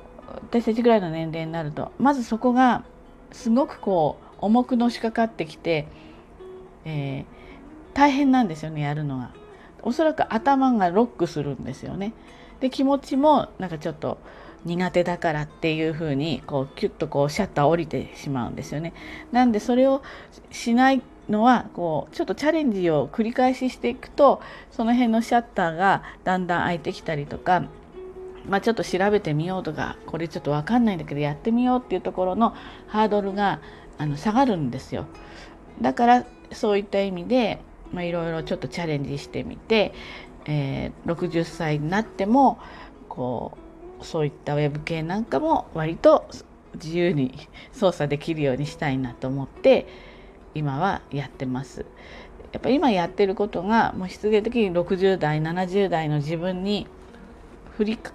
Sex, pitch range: female, 160-235 Hz